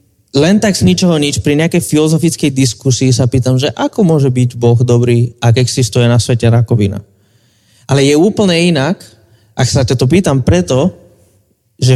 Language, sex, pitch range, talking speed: Slovak, male, 115-140 Hz, 165 wpm